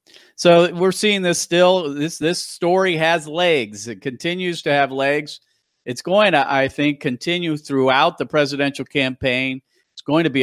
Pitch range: 130-165 Hz